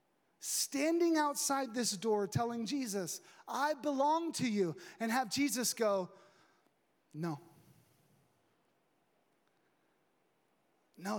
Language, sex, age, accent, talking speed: English, male, 30-49, American, 85 wpm